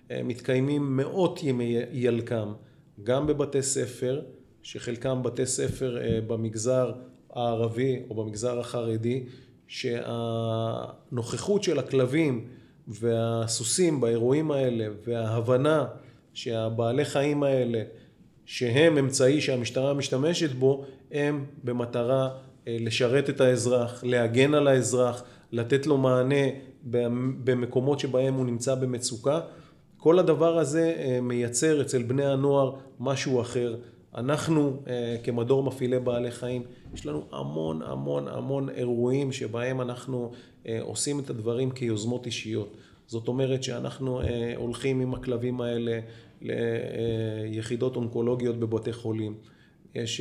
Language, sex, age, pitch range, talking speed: Hebrew, male, 30-49, 115-135 Hz, 100 wpm